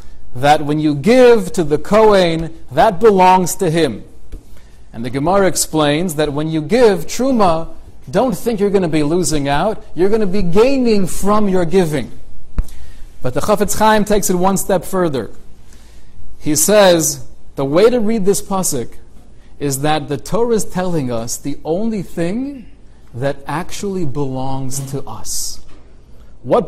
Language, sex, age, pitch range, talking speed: English, male, 40-59, 140-200 Hz, 155 wpm